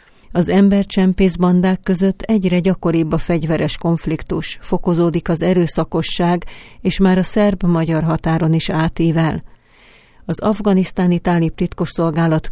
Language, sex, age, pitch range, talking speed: Hungarian, female, 40-59, 165-185 Hz, 110 wpm